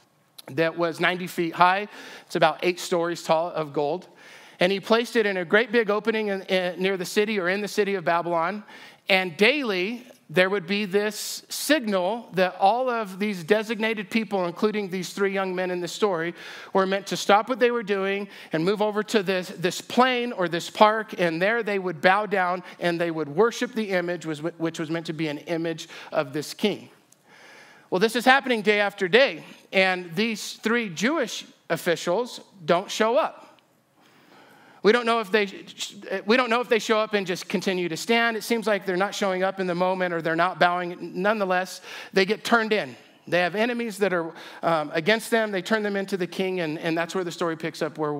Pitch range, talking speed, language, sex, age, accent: 175-215 Hz, 210 wpm, English, male, 40-59, American